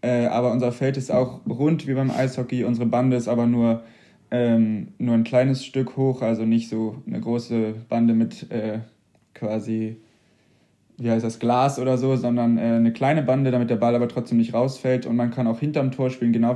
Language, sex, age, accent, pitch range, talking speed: German, male, 20-39, German, 115-130 Hz, 205 wpm